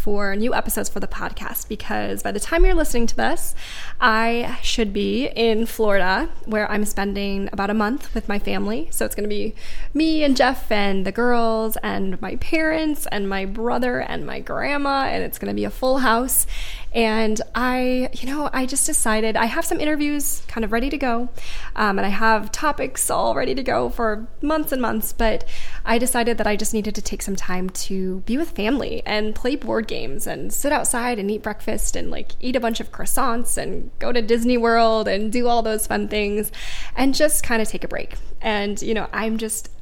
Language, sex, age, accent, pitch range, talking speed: English, female, 20-39, American, 210-260 Hz, 210 wpm